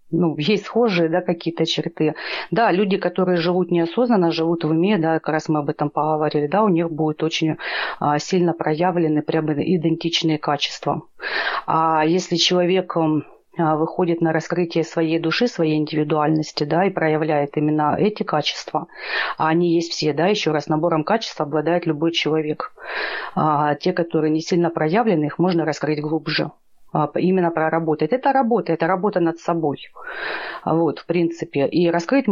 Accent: native